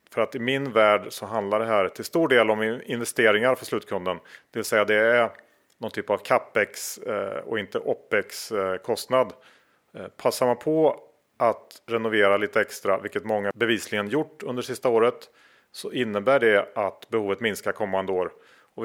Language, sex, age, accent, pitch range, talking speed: Swedish, male, 40-59, Norwegian, 105-130 Hz, 160 wpm